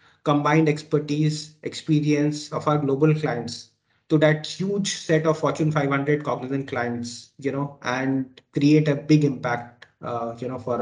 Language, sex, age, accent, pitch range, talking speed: English, male, 30-49, Indian, 130-160 Hz, 150 wpm